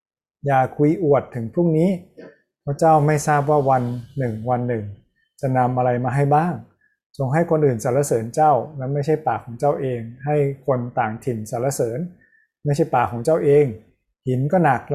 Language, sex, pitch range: Thai, male, 120-155 Hz